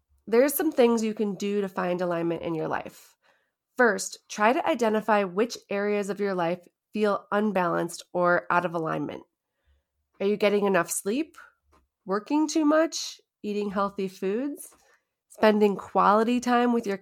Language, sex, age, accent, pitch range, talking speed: English, female, 30-49, American, 180-240 Hz, 150 wpm